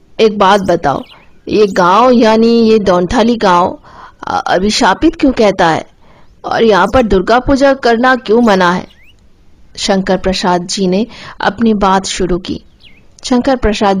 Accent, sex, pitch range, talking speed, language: native, female, 185-230 Hz, 135 wpm, Hindi